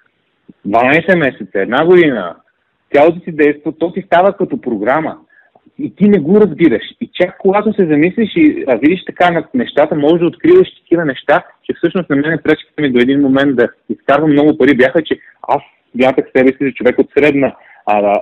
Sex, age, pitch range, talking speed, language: male, 30-49, 120-170 Hz, 190 wpm, Bulgarian